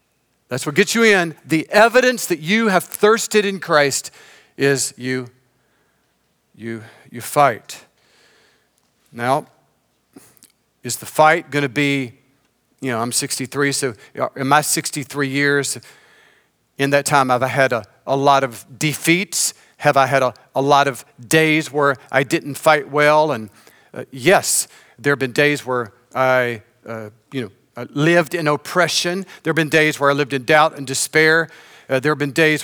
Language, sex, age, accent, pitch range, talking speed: English, male, 40-59, American, 125-160 Hz, 160 wpm